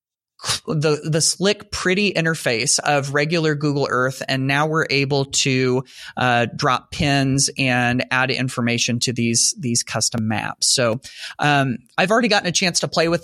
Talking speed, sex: 160 wpm, male